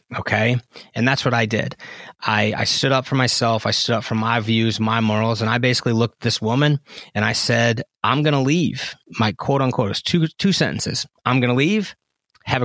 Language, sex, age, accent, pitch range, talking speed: English, male, 30-49, American, 110-130 Hz, 220 wpm